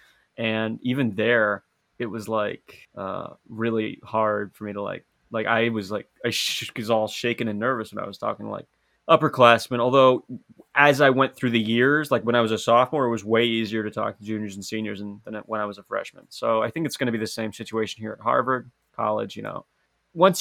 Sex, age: male, 20-39